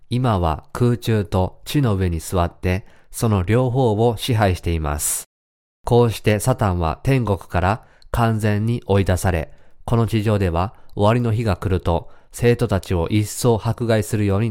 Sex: male